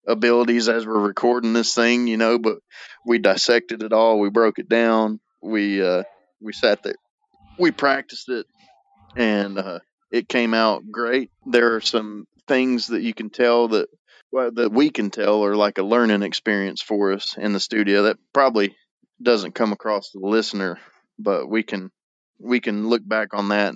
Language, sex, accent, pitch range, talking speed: English, male, American, 100-115 Hz, 180 wpm